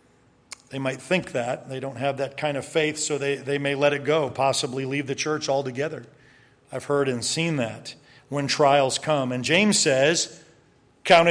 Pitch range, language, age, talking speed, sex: 130-155 Hz, English, 40-59, 185 wpm, male